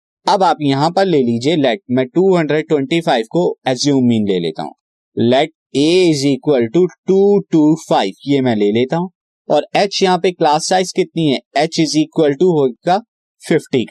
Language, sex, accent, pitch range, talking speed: Hindi, male, native, 140-175 Hz, 175 wpm